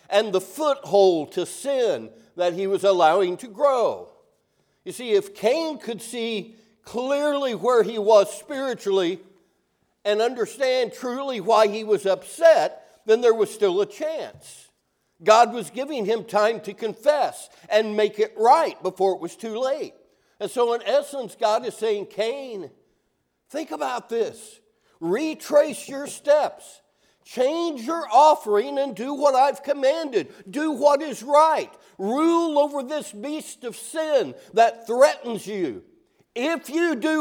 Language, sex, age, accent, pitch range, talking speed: English, male, 60-79, American, 200-305 Hz, 145 wpm